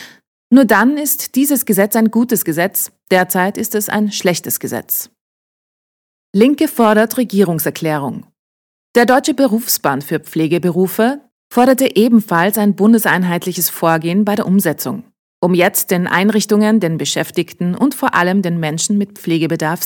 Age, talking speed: 30-49, 130 wpm